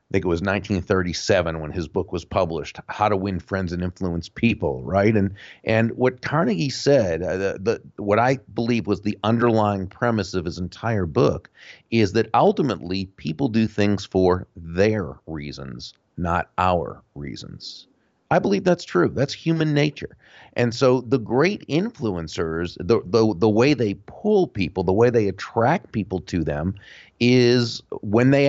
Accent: American